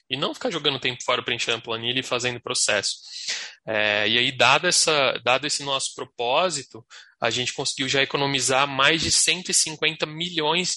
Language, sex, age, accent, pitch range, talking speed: Portuguese, male, 20-39, Brazilian, 125-165 Hz, 165 wpm